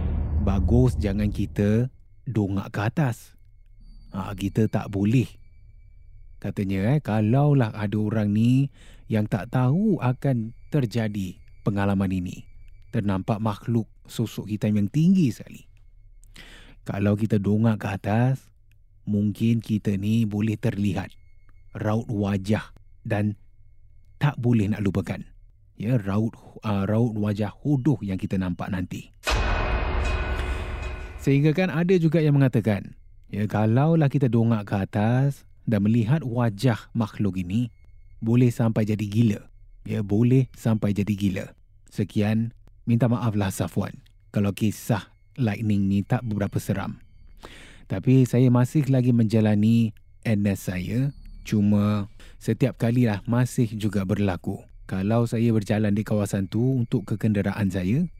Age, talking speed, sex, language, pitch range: 30-49, 120 wpm, male, Malay, 100-115 Hz